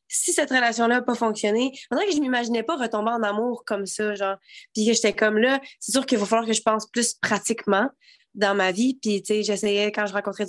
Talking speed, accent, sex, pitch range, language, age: 235 wpm, Canadian, female, 215-265 Hz, French, 20-39